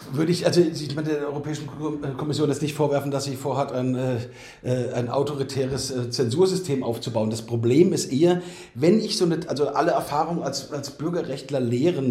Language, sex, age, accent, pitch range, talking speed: German, male, 40-59, German, 130-165 Hz, 160 wpm